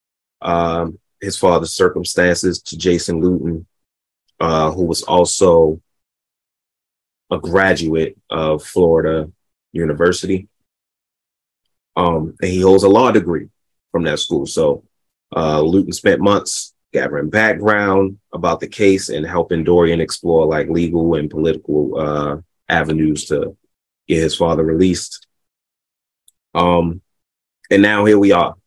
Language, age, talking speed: English, 30-49, 115 wpm